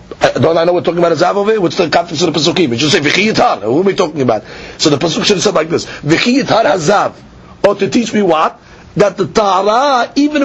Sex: male